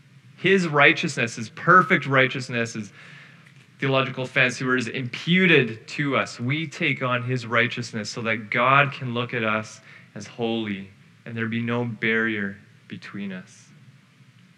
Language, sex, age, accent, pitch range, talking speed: English, male, 30-49, American, 120-155 Hz, 135 wpm